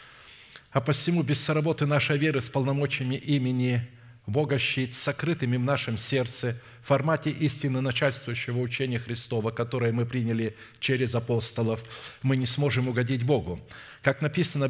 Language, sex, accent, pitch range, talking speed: Russian, male, native, 115-140 Hz, 130 wpm